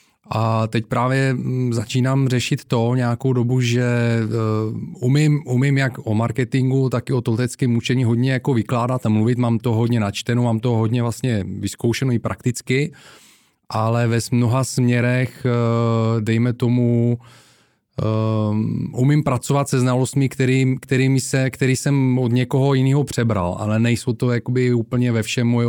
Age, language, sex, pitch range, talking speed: 30-49, Czech, male, 115-125 Hz, 140 wpm